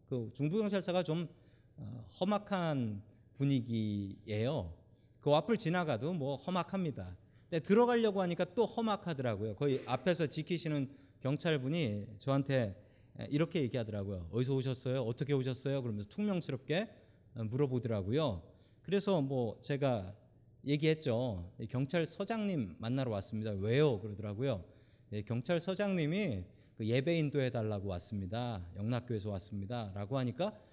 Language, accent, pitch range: Korean, native, 110-175 Hz